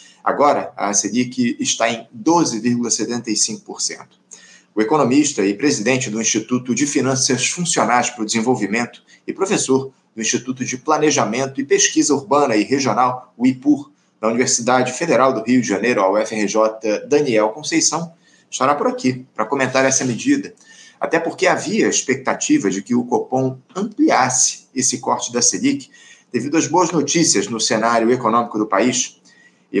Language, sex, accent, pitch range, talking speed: Portuguese, male, Brazilian, 120-155 Hz, 145 wpm